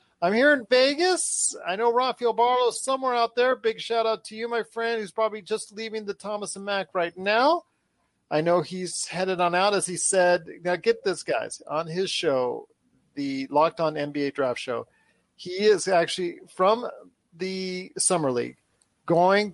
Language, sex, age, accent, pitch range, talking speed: English, male, 40-59, American, 145-205 Hz, 180 wpm